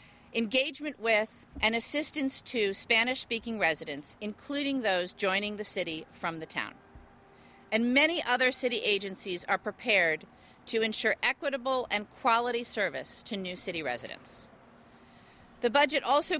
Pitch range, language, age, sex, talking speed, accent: 200-255 Hz, English, 40-59, female, 130 wpm, American